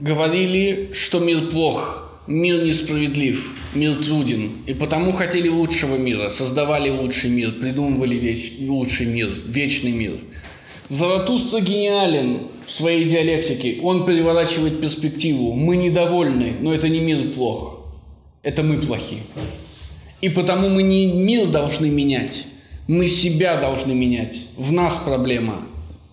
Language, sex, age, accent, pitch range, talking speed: Russian, male, 20-39, native, 125-165 Hz, 120 wpm